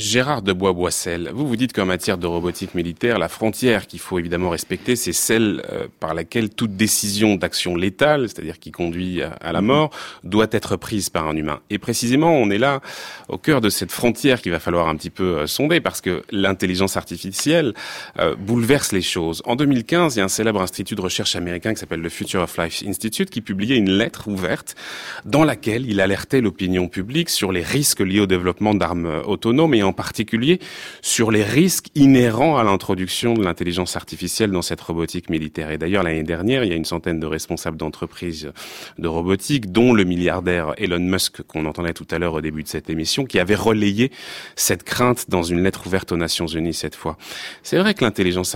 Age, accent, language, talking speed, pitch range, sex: 30-49, French, French, 205 wpm, 85-115 Hz, male